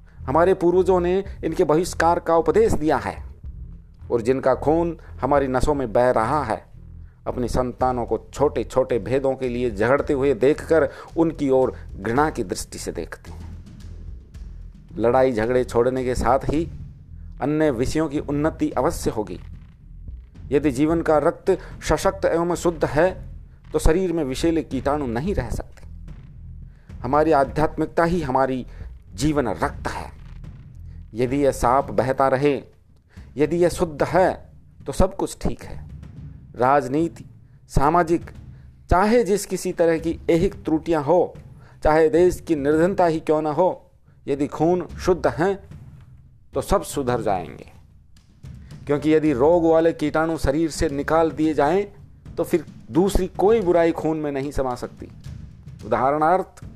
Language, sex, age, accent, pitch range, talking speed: Hindi, male, 50-69, native, 110-165 Hz, 140 wpm